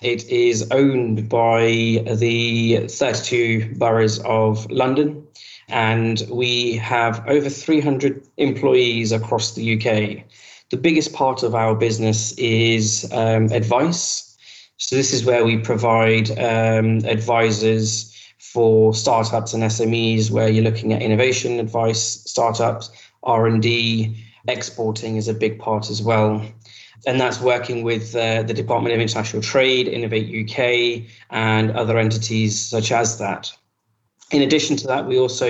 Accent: British